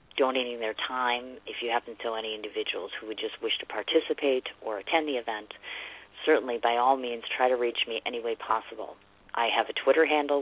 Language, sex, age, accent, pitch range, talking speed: English, female, 40-59, American, 115-145 Hz, 205 wpm